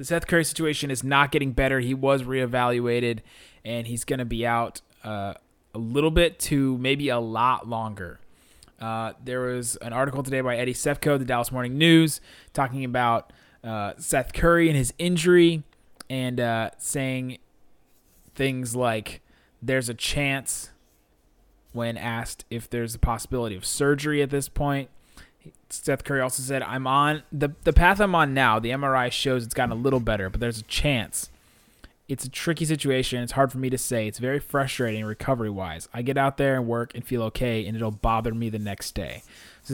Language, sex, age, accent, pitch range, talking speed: English, male, 20-39, American, 115-145 Hz, 185 wpm